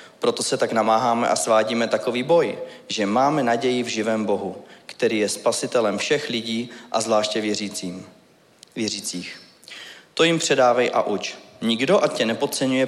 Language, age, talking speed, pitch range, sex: Czech, 40-59, 150 wpm, 110-130 Hz, male